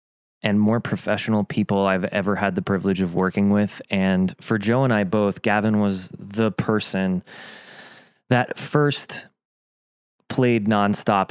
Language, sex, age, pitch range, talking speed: English, male, 20-39, 95-110 Hz, 140 wpm